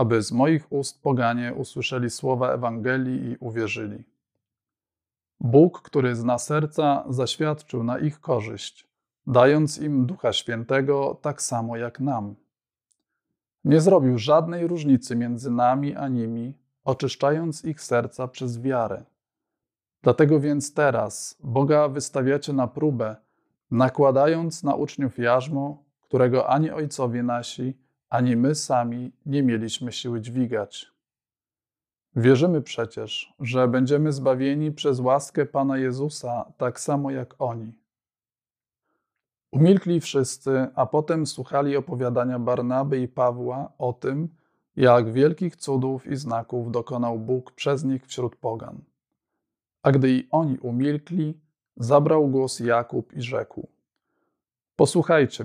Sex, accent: male, native